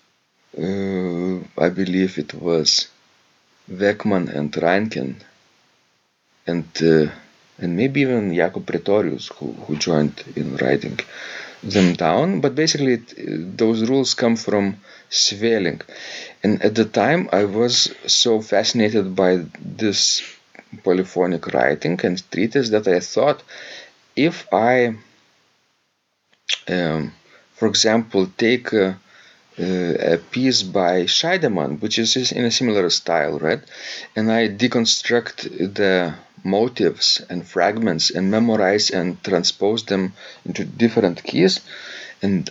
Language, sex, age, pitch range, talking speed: English, male, 40-59, 90-115 Hz, 115 wpm